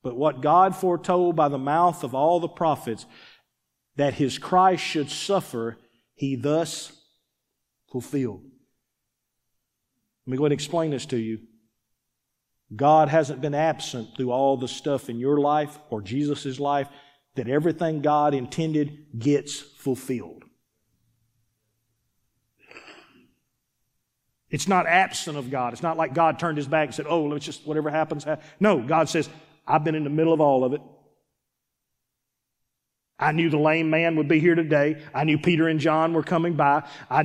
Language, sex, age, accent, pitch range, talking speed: English, male, 50-69, American, 125-160 Hz, 155 wpm